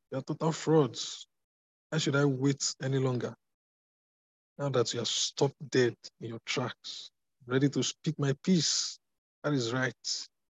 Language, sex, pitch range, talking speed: English, male, 110-145 Hz, 155 wpm